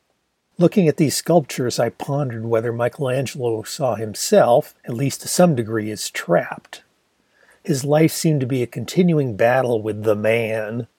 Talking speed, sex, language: 155 wpm, male, English